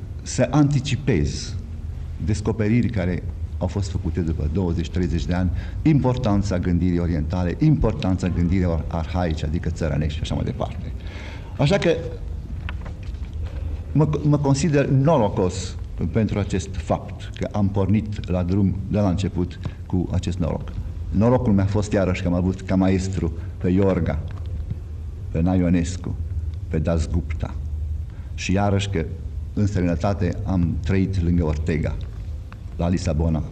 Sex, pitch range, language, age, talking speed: male, 85-100 Hz, Romanian, 60-79, 125 wpm